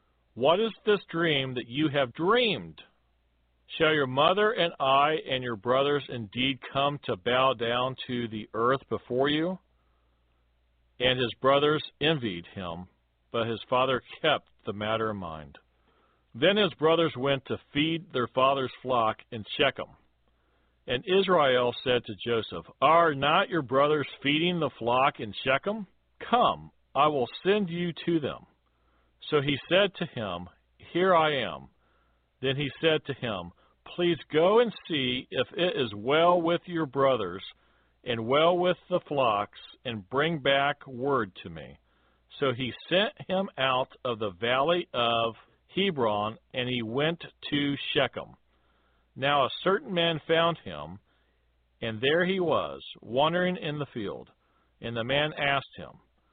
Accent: American